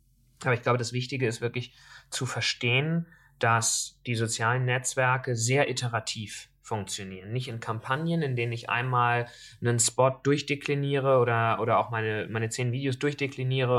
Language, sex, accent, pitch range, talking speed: German, male, German, 120-145 Hz, 150 wpm